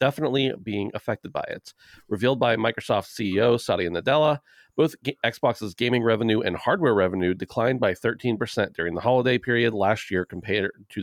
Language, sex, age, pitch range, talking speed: English, male, 40-59, 95-125 Hz, 160 wpm